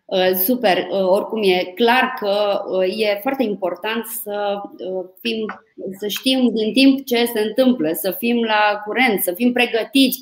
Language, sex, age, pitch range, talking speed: Romanian, female, 20-39, 185-240 Hz, 140 wpm